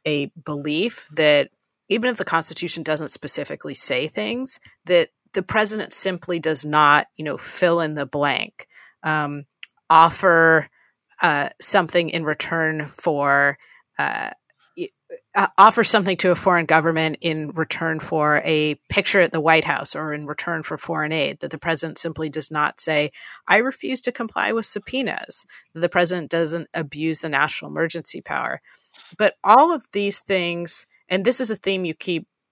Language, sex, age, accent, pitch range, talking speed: English, female, 30-49, American, 155-200 Hz, 160 wpm